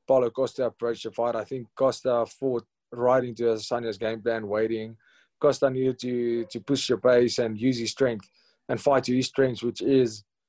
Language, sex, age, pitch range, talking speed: English, male, 20-39, 115-130 Hz, 190 wpm